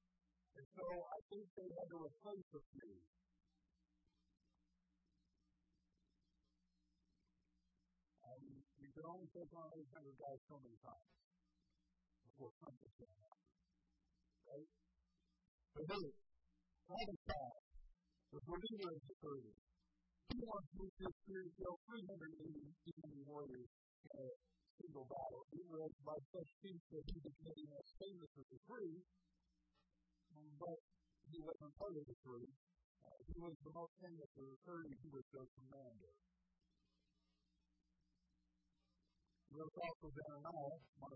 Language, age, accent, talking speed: English, 50-69, American, 115 wpm